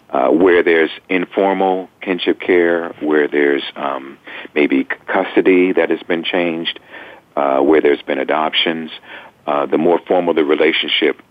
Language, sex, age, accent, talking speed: English, male, 50-69, American, 140 wpm